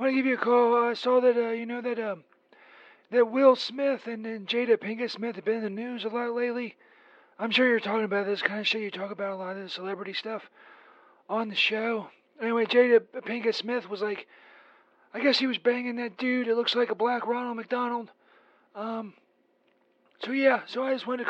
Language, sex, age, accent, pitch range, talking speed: English, male, 30-49, American, 225-255 Hz, 230 wpm